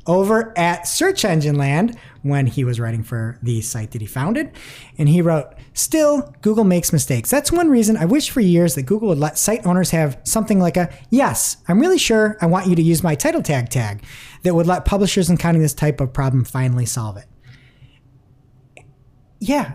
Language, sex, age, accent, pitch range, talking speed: English, male, 30-49, American, 130-215 Hz, 200 wpm